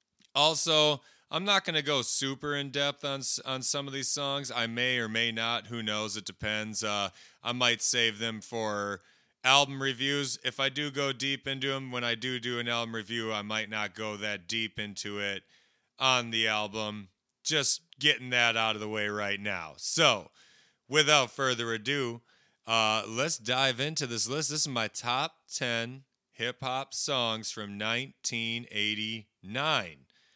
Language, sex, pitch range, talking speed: English, male, 110-135 Hz, 165 wpm